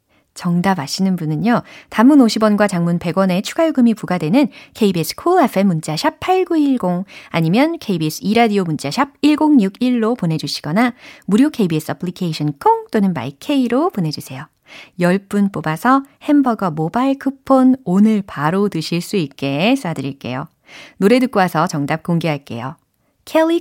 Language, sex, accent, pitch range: Korean, female, native, 160-270 Hz